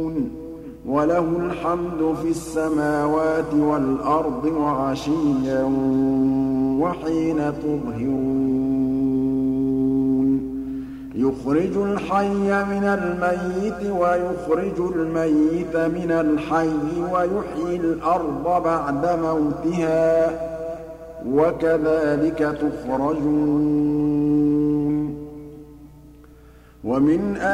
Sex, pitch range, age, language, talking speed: male, 150-170 Hz, 50-69, Arabic, 50 wpm